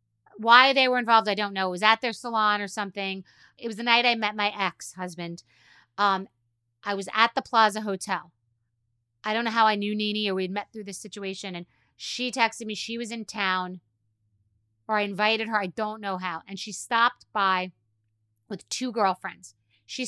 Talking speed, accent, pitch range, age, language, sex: 195 wpm, American, 180-225 Hz, 30-49, English, female